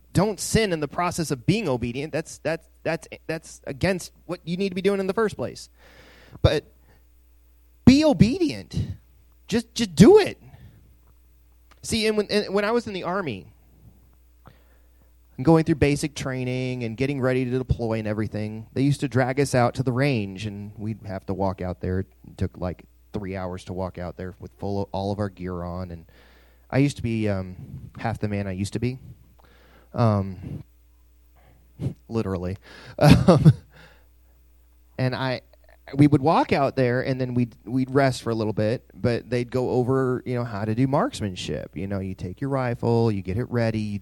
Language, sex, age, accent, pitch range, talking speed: English, male, 30-49, American, 95-135 Hz, 185 wpm